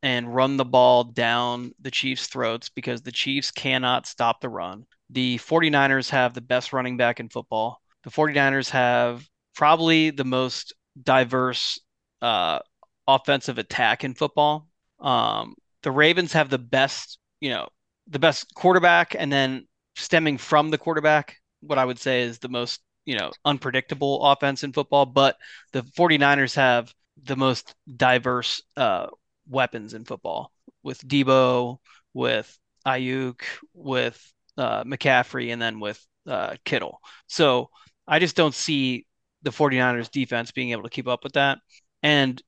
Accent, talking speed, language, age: American, 150 wpm, English, 20-39